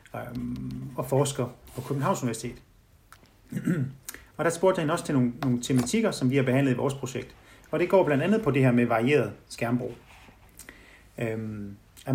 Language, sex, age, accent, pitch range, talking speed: Danish, male, 30-49, native, 120-145 Hz, 165 wpm